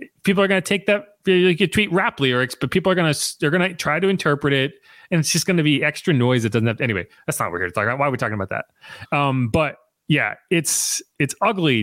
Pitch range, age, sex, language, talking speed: 125-180 Hz, 30-49, male, English, 255 wpm